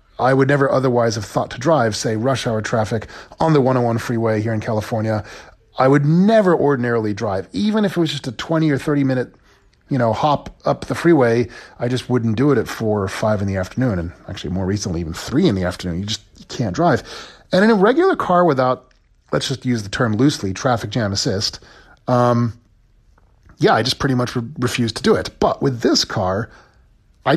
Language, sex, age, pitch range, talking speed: English, male, 40-59, 110-140 Hz, 215 wpm